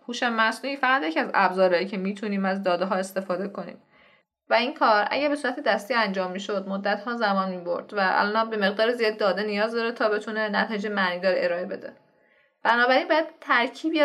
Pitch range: 195-260 Hz